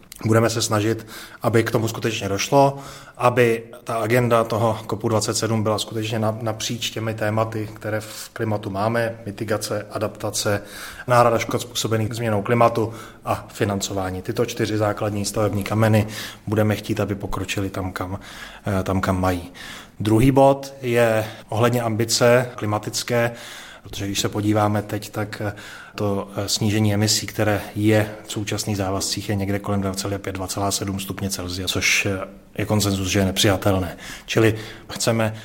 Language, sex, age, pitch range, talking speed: Czech, male, 30-49, 105-115 Hz, 135 wpm